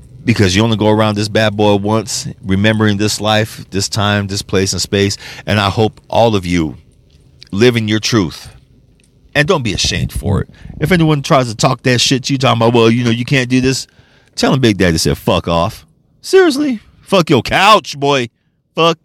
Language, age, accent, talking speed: English, 40-59, American, 205 wpm